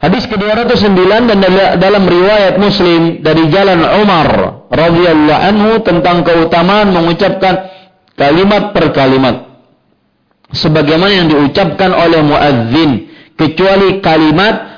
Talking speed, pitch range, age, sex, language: 95 wpm, 140-190 Hz, 50-69, male, Malay